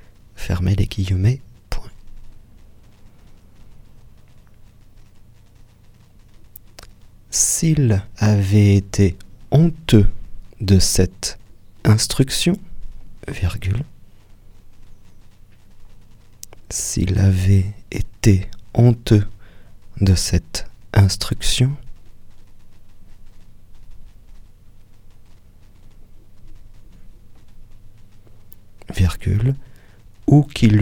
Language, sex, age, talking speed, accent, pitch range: French, male, 40-59, 45 wpm, French, 95-110 Hz